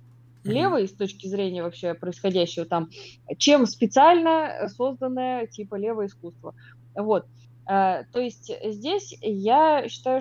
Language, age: Russian, 20-39